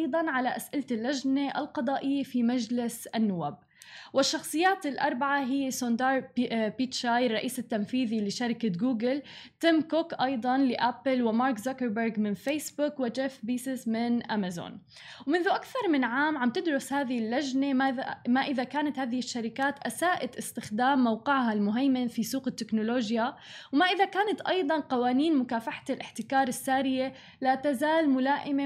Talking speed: 130 wpm